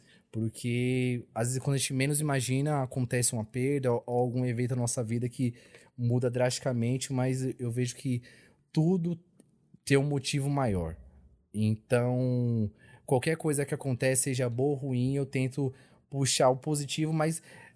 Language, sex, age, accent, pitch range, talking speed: Portuguese, male, 20-39, Brazilian, 120-155 Hz, 150 wpm